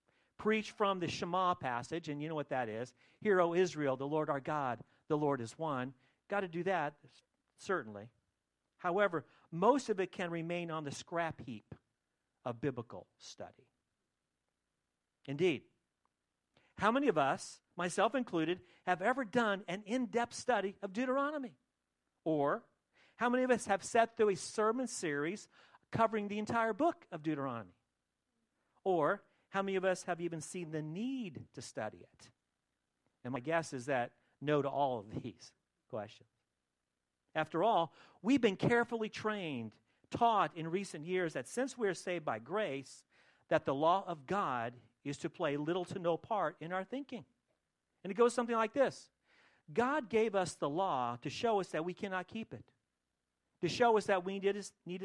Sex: male